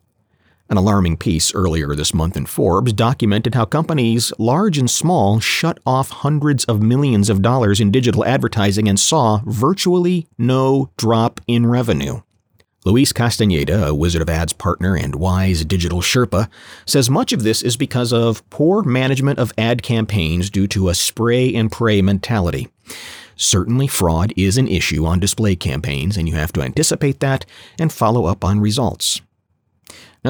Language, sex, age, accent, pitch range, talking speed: English, male, 40-59, American, 90-120 Hz, 155 wpm